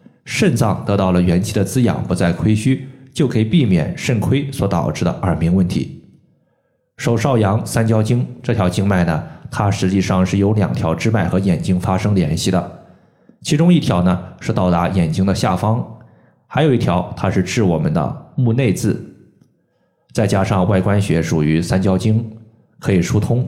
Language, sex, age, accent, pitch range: Chinese, male, 20-39, native, 90-125 Hz